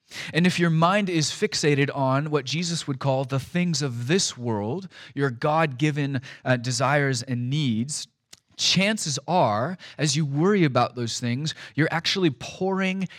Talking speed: 150 wpm